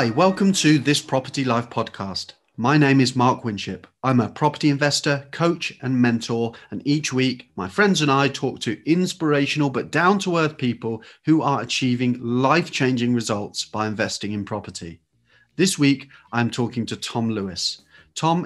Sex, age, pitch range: male, 30-49, 115-145 Hz